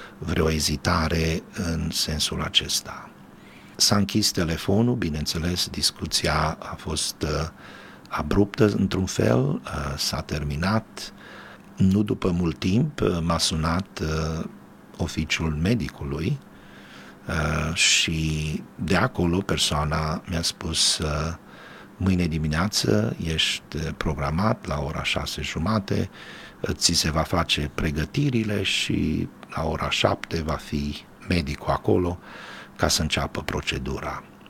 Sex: male